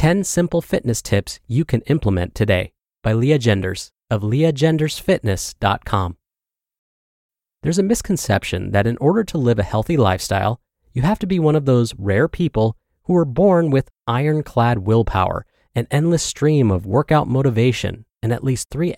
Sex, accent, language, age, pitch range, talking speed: male, American, English, 30-49, 105-155 Hz, 155 wpm